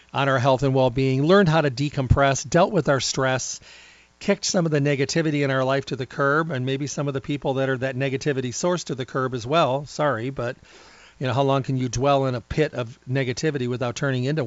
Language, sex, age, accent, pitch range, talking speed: English, male, 40-59, American, 115-140 Hz, 235 wpm